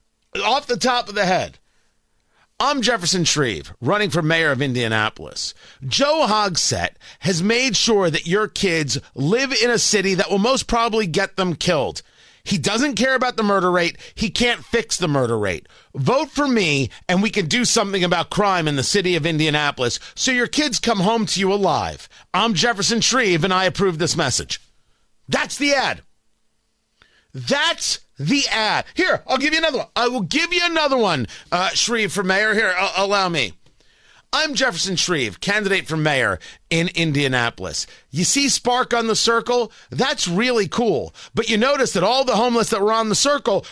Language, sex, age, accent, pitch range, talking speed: English, male, 40-59, American, 175-240 Hz, 180 wpm